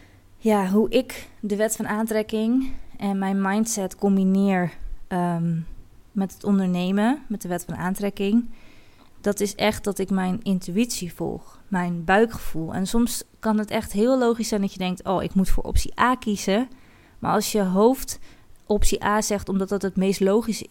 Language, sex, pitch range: Dutch, female, 190-220 Hz